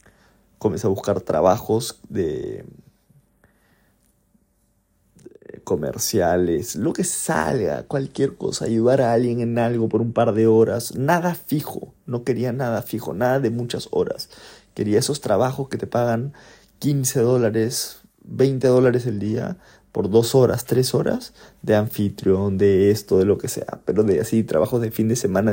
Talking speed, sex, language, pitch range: 155 wpm, male, Spanish, 100-125 Hz